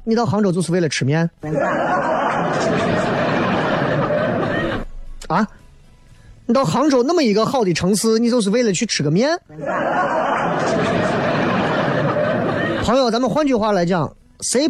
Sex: male